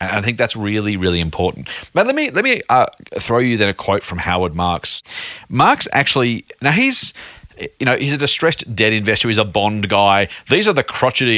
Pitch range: 95-115 Hz